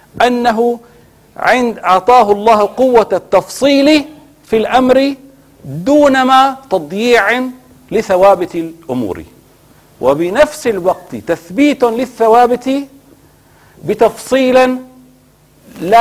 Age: 50-69